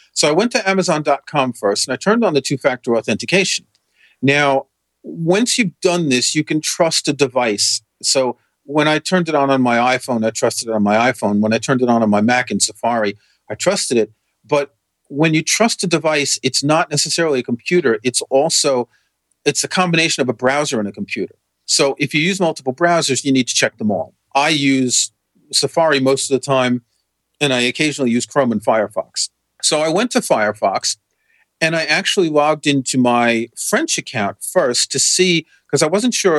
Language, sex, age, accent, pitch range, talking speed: English, male, 40-59, American, 120-155 Hz, 195 wpm